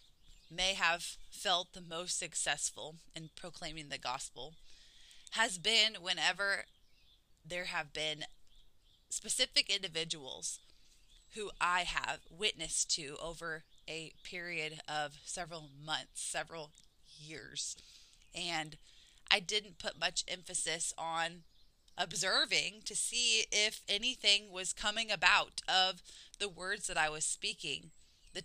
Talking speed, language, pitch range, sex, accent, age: 115 wpm, English, 160-195 Hz, female, American, 20-39